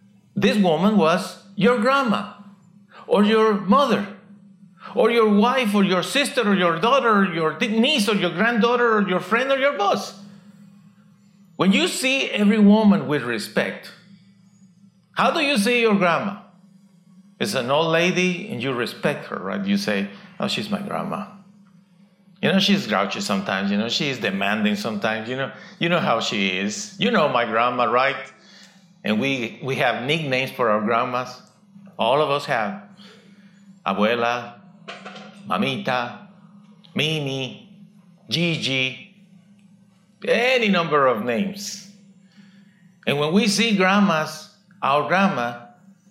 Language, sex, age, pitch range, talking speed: English, male, 50-69, 180-205 Hz, 135 wpm